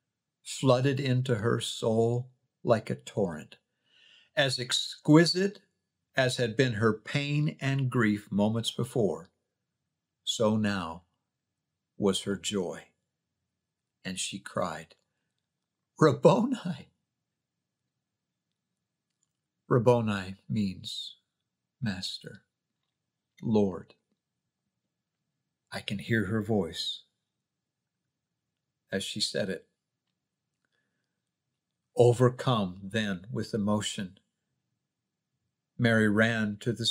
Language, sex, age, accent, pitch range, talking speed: English, male, 50-69, American, 105-135 Hz, 80 wpm